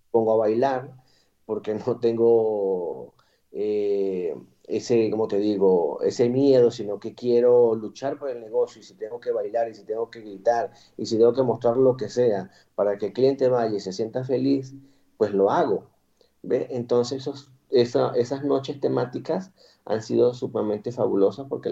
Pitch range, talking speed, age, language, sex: 110-145 Hz, 170 wpm, 40-59, Spanish, male